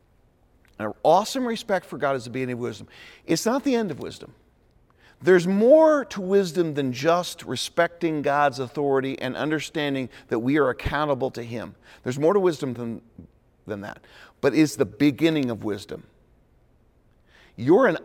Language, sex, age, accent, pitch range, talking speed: English, male, 40-59, American, 120-175 Hz, 165 wpm